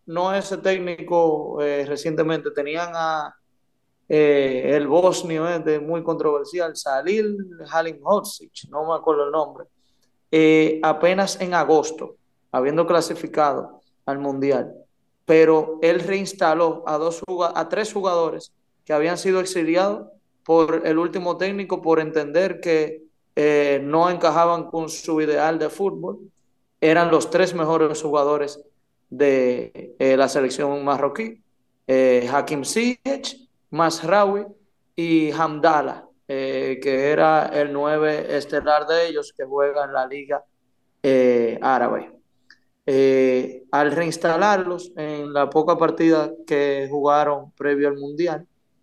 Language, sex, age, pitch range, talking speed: Spanish, male, 30-49, 145-175 Hz, 125 wpm